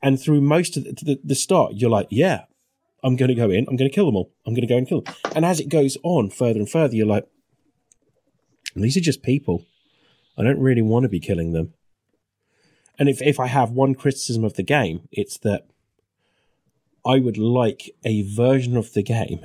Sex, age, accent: male, 30-49, British